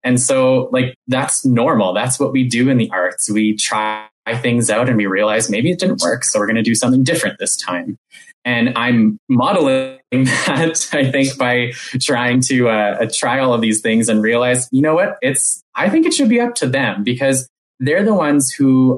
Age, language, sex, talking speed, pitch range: 20-39, English, male, 210 wpm, 115-135 Hz